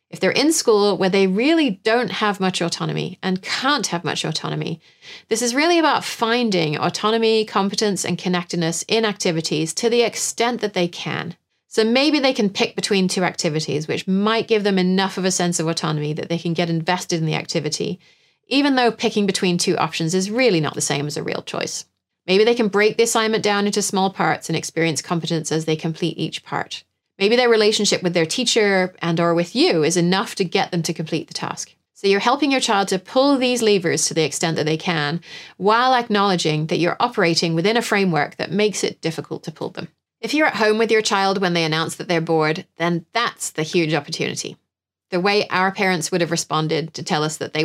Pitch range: 165-215 Hz